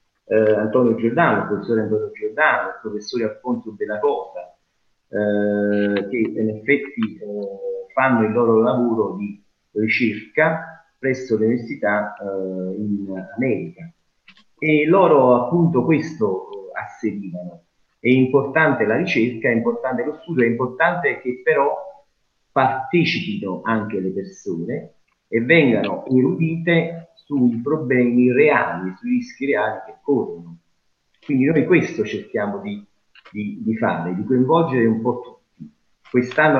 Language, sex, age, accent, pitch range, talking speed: Italian, male, 40-59, native, 105-160 Hz, 125 wpm